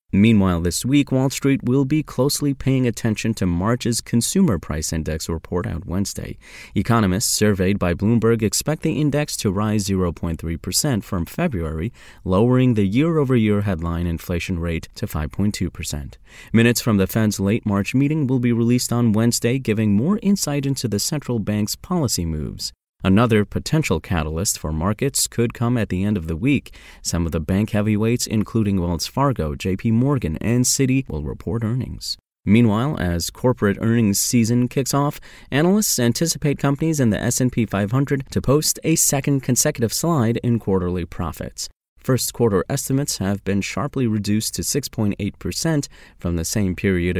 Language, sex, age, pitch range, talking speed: English, male, 30-49, 90-125 Hz, 155 wpm